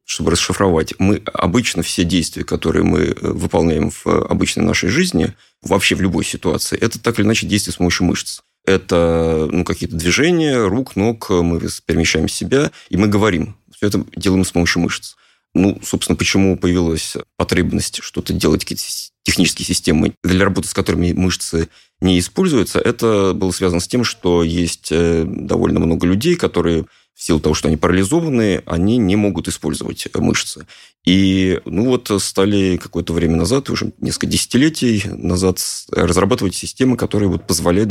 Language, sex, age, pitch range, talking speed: Russian, male, 30-49, 85-100 Hz, 155 wpm